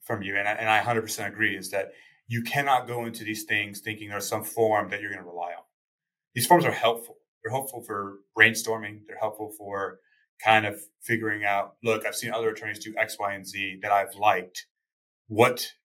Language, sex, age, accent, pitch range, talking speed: English, male, 30-49, American, 105-155 Hz, 210 wpm